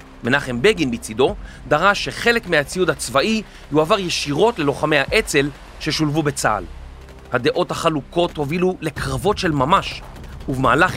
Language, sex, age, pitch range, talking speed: Hebrew, male, 40-59, 130-185 Hz, 110 wpm